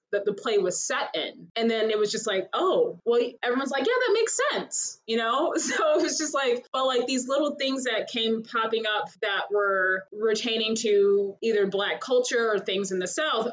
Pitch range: 195-235 Hz